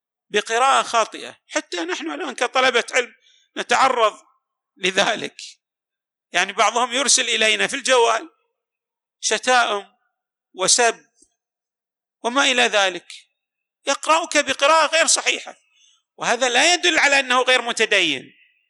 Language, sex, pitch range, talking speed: Arabic, male, 205-305 Hz, 100 wpm